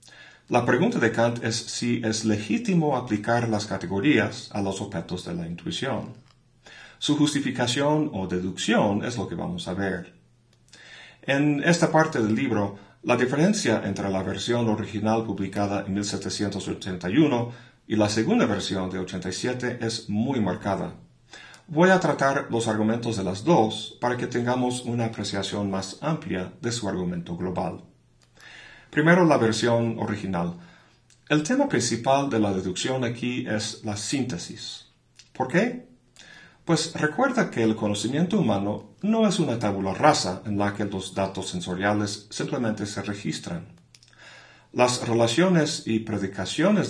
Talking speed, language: 140 wpm, Spanish